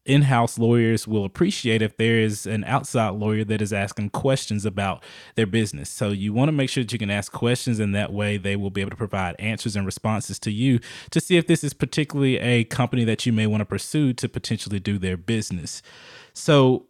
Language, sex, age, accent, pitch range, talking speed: English, male, 20-39, American, 105-125 Hz, 220 wpm